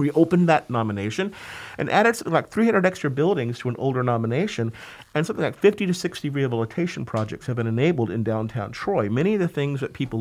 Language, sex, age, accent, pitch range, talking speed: English, male, 50-69, American, 115-155 Hz, 205 wpm